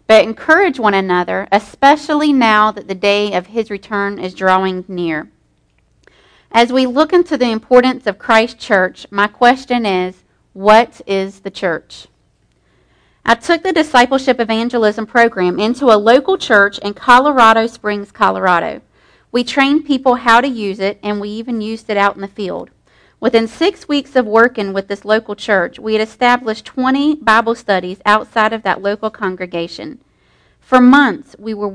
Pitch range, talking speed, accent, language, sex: 200-245 Hz, 160 wpm, American, English, female